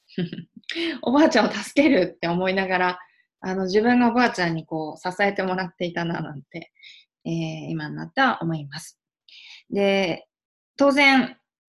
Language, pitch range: Japanese, 170-220 Hz